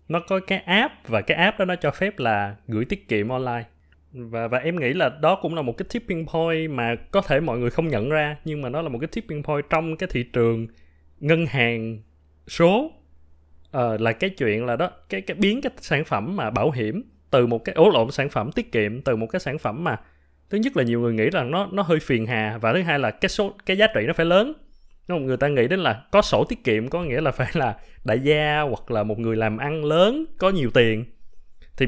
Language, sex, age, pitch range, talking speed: Vietnamese, male, 20-39, 115-180 Hz, 250 wpm